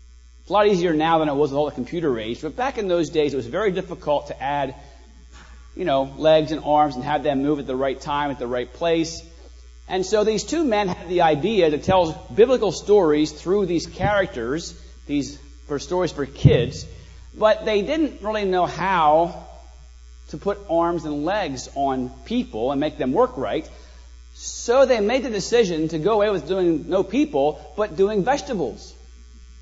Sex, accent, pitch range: male, American, 115-180 Hz